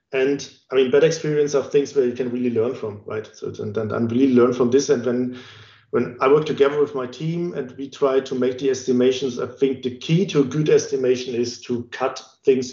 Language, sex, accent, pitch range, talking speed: English, male, German, 125-150 Hz, 230 wpm